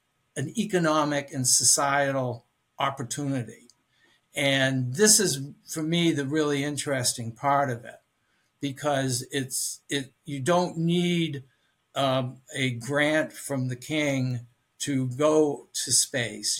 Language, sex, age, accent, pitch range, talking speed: English, male, 60-79, American, 130-155 Hz, 115 wpm